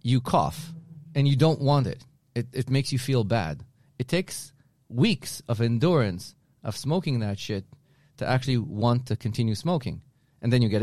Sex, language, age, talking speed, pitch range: male, English, 30-49, 175 wpm, 115-140 Hz